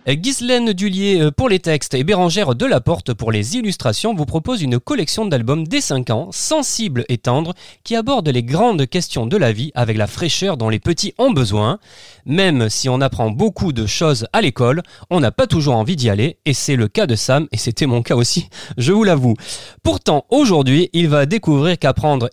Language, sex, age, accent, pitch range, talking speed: French, male, 30-49, French, 125-185 Hz, 200 wpm